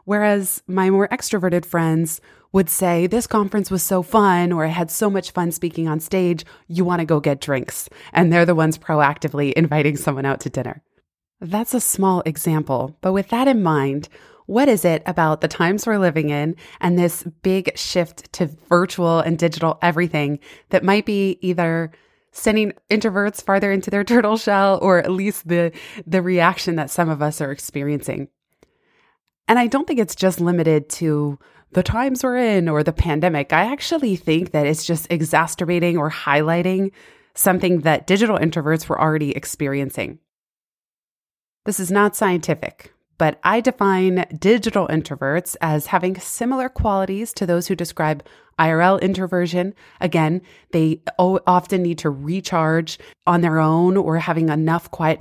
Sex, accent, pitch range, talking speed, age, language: female, American, 155-195 Hz, 165 wpm, 20-39, English